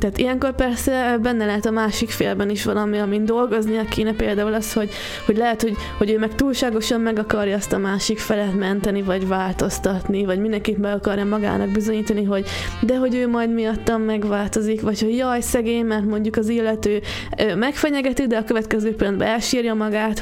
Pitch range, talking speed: 210-240 Hz, 180 wpm